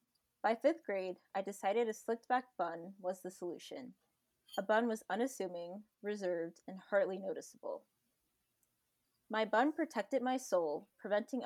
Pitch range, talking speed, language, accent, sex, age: 185-235 Hz, 130 wpm, English, American, female, 20-39